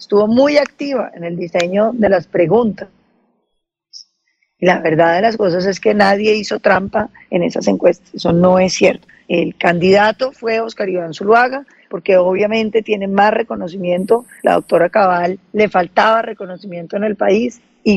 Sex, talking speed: female, 160 wpm